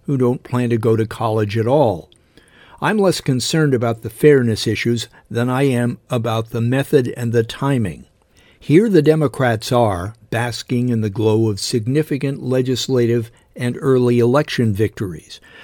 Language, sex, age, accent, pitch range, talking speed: English, male, 60-79, American, 115-140 Hz, 155 wpm